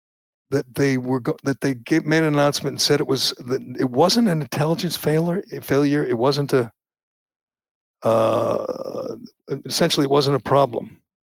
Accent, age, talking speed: American, 60-79, 160 wpm